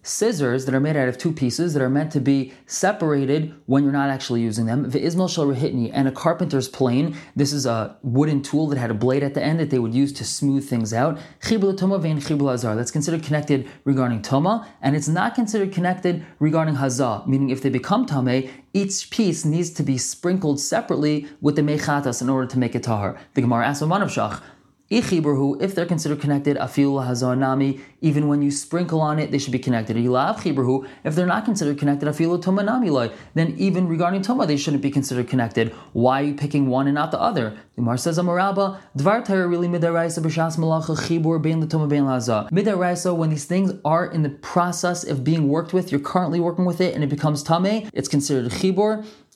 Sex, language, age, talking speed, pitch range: male, English, 20-39, 170 wpm, 135-170 Hz